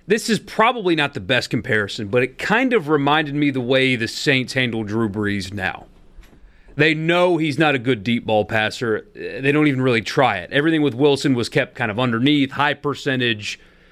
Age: 30-49